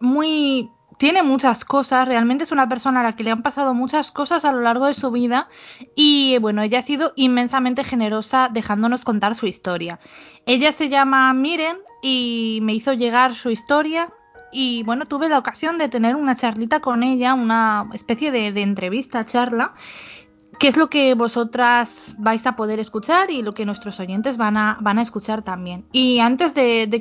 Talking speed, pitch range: 185 wpm, 225-275 Hz